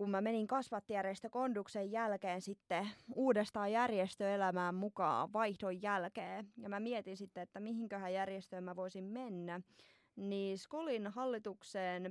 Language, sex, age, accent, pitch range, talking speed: Finnish, female, 20-39, native, 190-240 Hz, 120 wpm